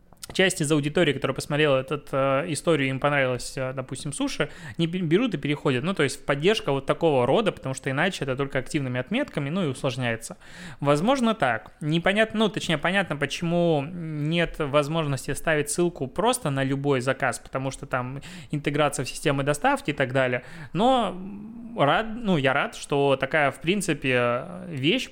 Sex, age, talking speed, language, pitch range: male, 20-39, 160 wpm, Russian, 135-165 Hz